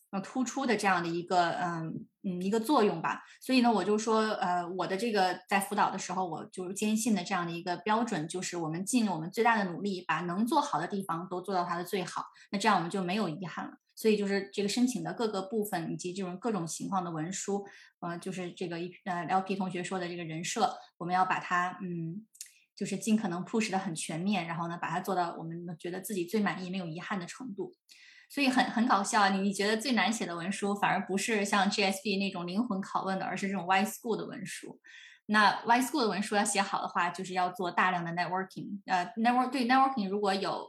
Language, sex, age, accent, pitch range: Chinese, female, 20-39, native, 180-215 Hz